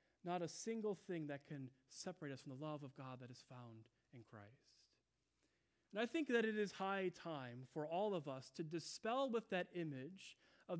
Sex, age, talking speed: male, 30-49, 200 wpm